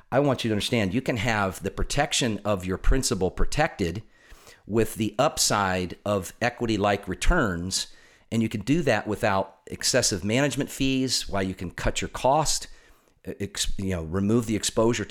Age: 50-69